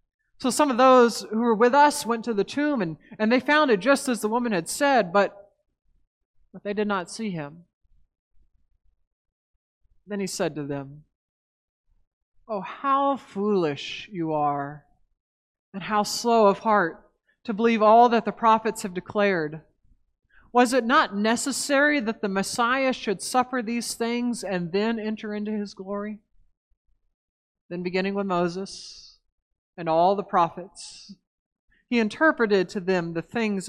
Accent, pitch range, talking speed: American, 165-235 Hz, 150 wpm